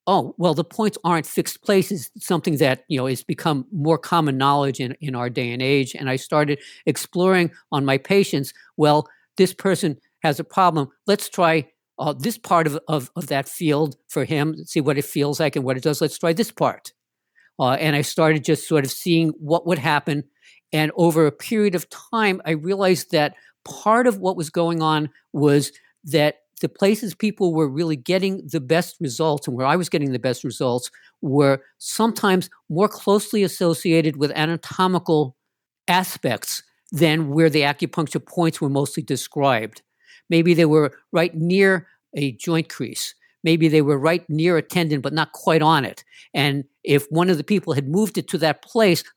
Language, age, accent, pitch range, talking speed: English, 50-69, American, 145-175 Hz, 190 wpm